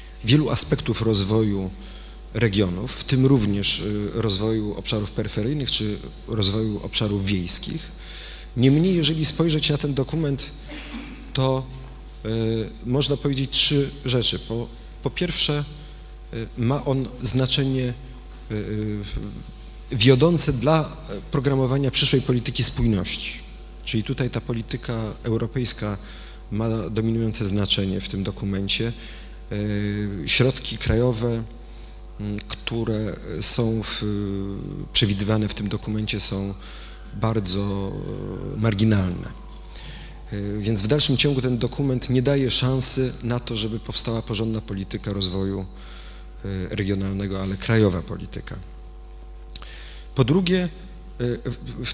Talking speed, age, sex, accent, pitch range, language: 95 wpm, 30-49, male, native, 105-130 Hz, Polish